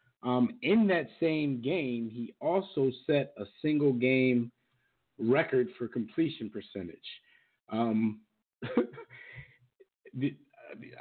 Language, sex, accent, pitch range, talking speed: English, male, American, 105-135 Hz, 95 wpm